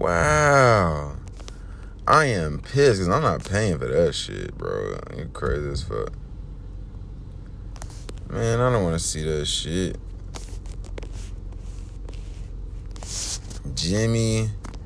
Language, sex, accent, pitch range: English, male, American, 80-100 Hz